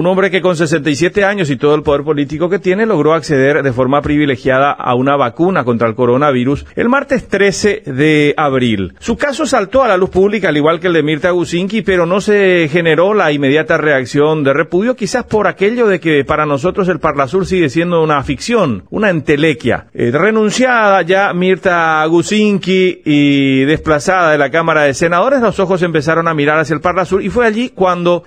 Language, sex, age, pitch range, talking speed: Spanish, male, 40-59, 145-195 Hz, 195 wpm